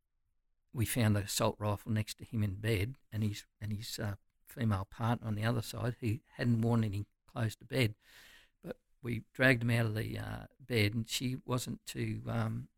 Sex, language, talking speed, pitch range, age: male, English, 195 wpm, 110-125 Hz, 60-79